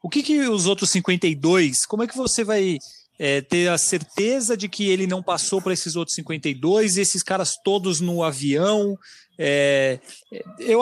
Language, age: Portuguese, 30-49